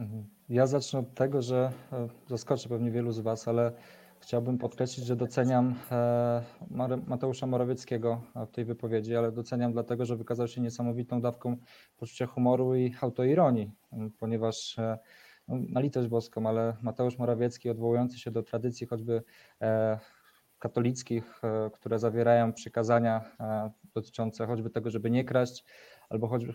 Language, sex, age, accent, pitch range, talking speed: Polish, male, 20-39, native, 115-125 Hz, 125 wpm